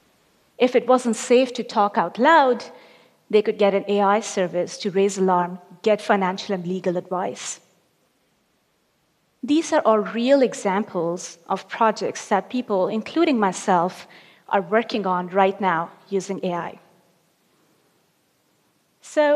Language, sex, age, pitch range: Korean, female, 30-49, 185-245 Hz